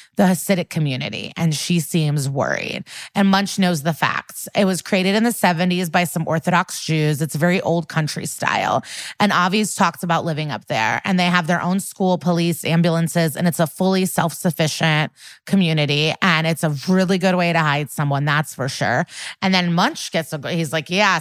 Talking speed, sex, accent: 185 wpm, female, American